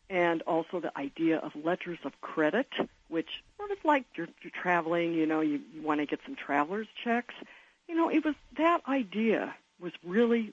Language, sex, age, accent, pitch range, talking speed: English, female, 60-79, American, 155-210 Hz, 180 wpm